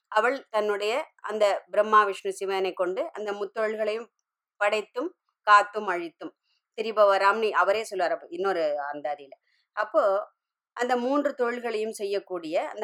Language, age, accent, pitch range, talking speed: Tamil, 20-39, native, 190-270 Hz, 110 wpm